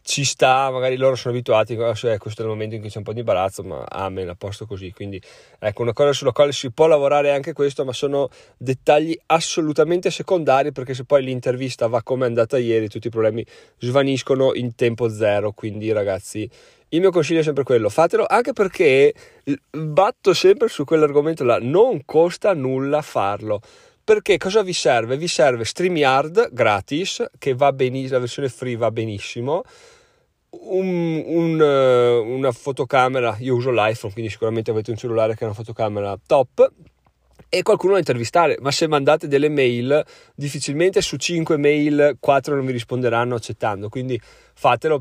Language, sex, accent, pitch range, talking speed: Italian, male, native, 115-160 Hz, 170 wpm